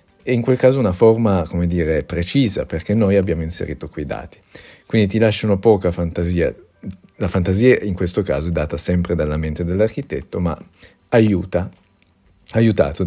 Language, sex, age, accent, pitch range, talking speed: Italian, male, 40-59, native, 80-100 Hz, 155 wpm